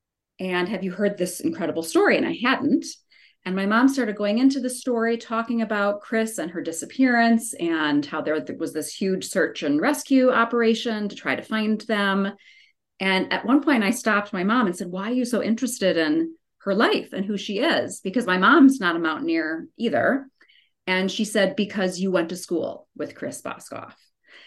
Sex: female